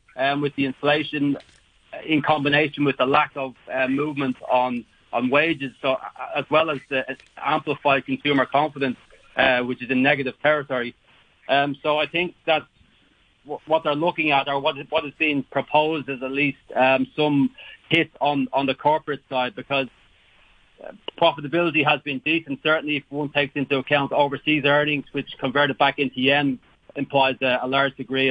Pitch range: 130-150 Hz